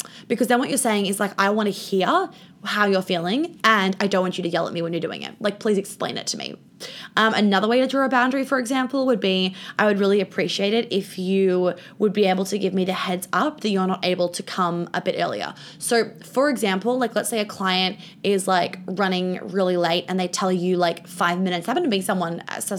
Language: English